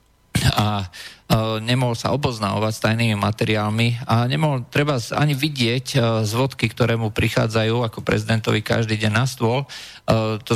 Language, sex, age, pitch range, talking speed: Slovak, male, 40-59, 105-125 Hz, 150 wpm